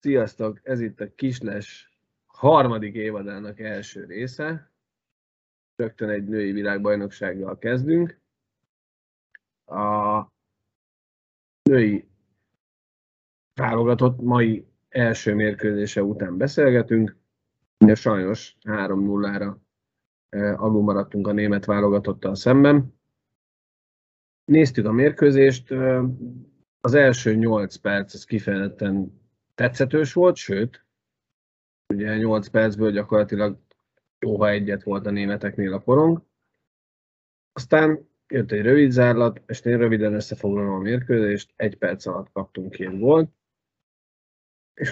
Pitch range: 100-125 Hz